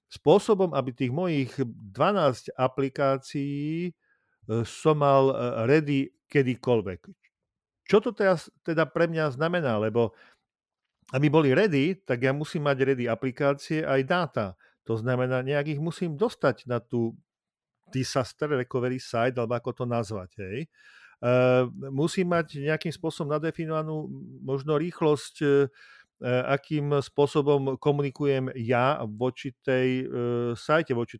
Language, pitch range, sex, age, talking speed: Slovak, 120-155 Hz, male, 50-69, 115 wpm